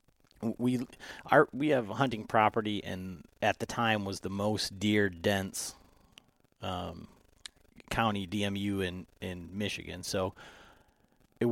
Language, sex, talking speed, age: English, male, 120 wpm, 30-49